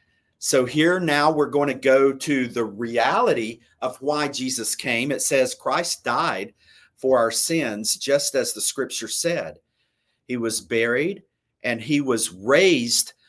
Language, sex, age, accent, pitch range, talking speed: English, male, 50-69, American, 130-200 Hz, 150 wpm